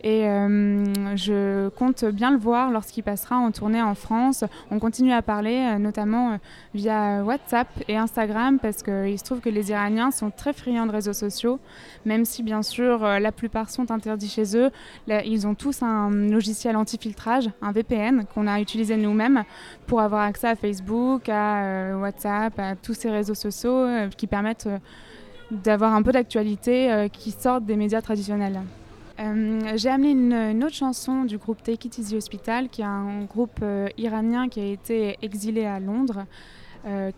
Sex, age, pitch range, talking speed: female, 20-39, 205-235 Hz, 180 wpm